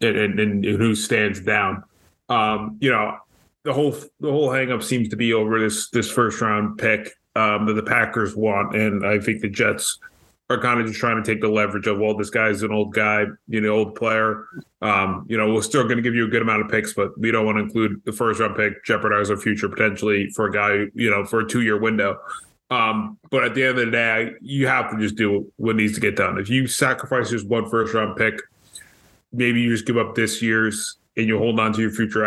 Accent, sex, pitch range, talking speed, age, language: American, male, 105-115 Hz, 245 wpm, 20-39, English